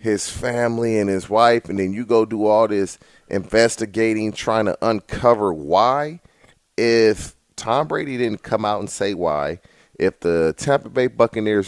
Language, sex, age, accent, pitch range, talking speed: English, male, 40-59, American, 100-135 Hz, 160 wpm